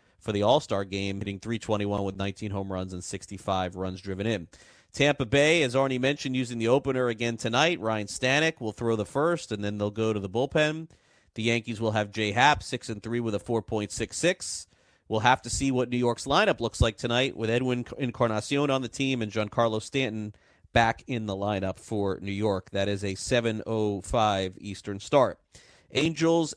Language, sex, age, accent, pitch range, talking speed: English, male, 30-49, American, 110-130 Hz, 185 wpm